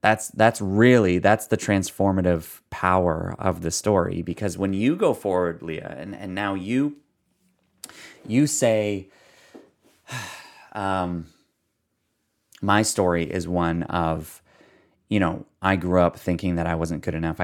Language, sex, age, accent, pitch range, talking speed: English, male, 30-49, American, 85-100 Hz, 135 wpm